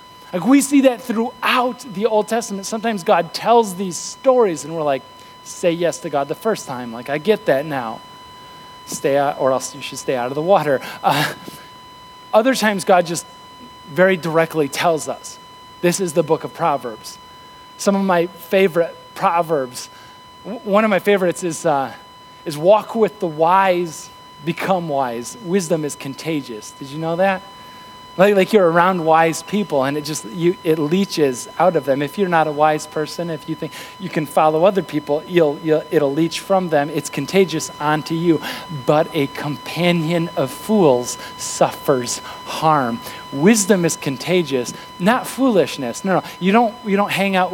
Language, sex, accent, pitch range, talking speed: English, male, American, 150-205 Hz, 175 wpm